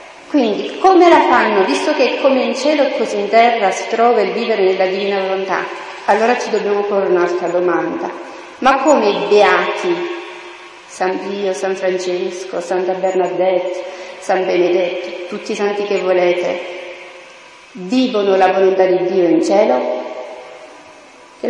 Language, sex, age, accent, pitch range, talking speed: Italian, female, 40-59, native, 185-265 Hz, 140 wpm